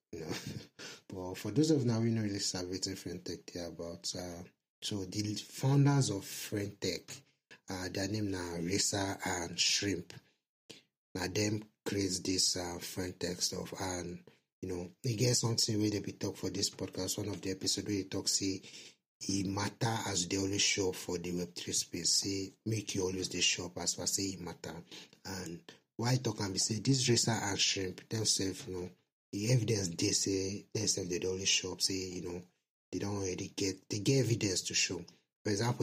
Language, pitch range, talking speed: English, 95-110 Hz, 200 wpm